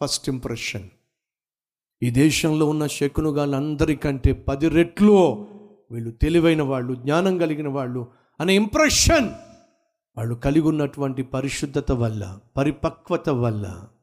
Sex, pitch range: male, 115-155 Hz